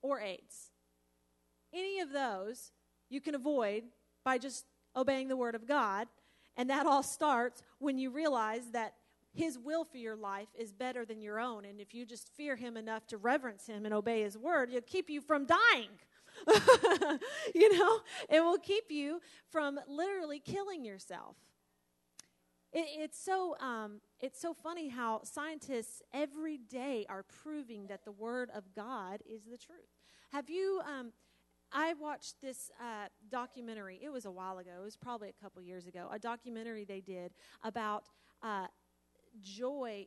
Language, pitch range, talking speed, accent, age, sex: English, 210-290 Hz, 160 wpm, American, 30-49, female